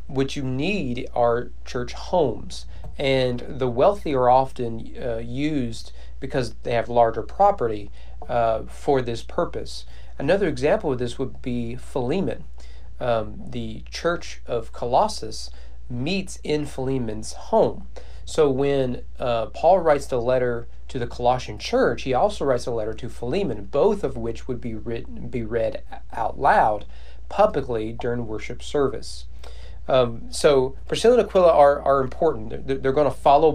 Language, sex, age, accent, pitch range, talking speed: English, male, 40-59, American, 110-140 Hz, 145 wpm